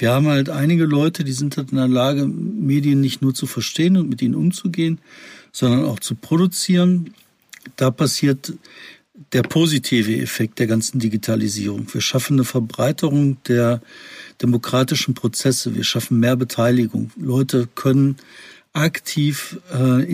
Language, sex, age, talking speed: German, male, 50-69, 140 wpm